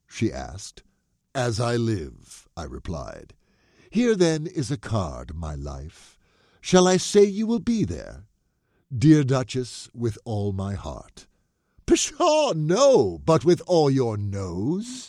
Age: 60-79